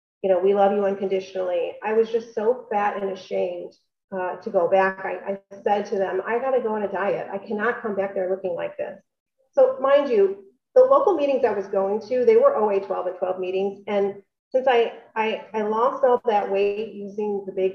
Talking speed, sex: 225 wpm, female